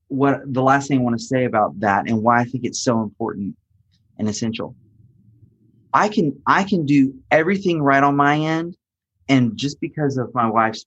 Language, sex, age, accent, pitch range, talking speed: English, male, 30-49, American, 120-140 Hz, 195 wpm